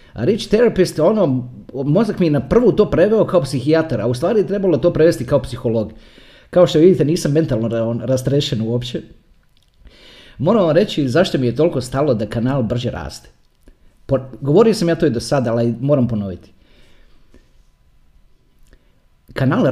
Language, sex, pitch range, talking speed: Croatian, male, 115-155 Hz, 155 wpm